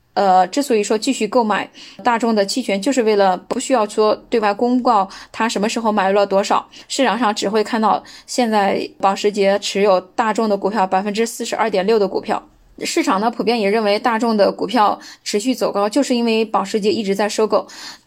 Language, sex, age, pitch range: Chinese, female, 10-29, 205-245 Hz